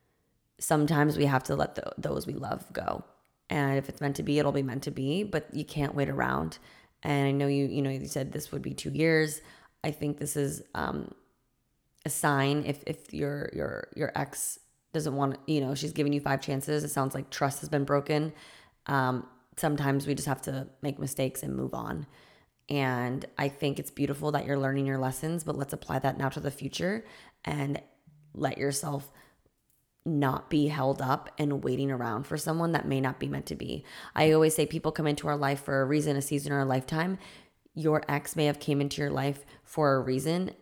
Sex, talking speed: female, 210 wpm